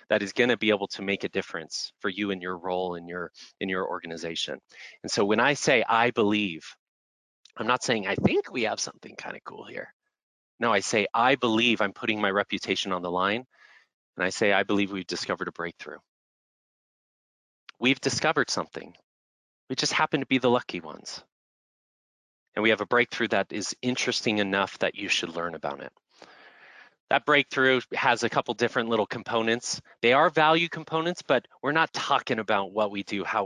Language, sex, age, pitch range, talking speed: English, male, 30-49, 95-120 Hz, 190 wpm